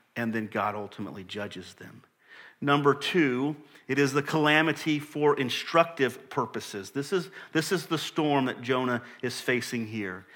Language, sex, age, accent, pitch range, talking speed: English, male, 40-59, American, 130-170 Hz, 145 wpm